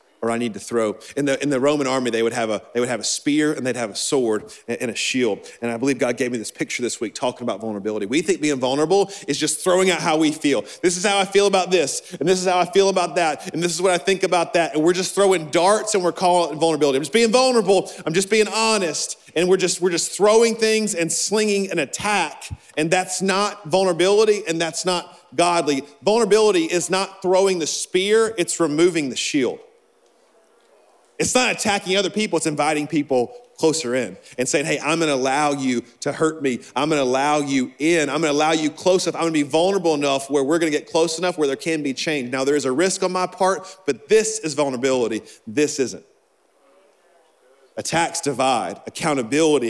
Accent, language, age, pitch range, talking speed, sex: American, English, 40-59, 135-190 Hz, 225 wpm, male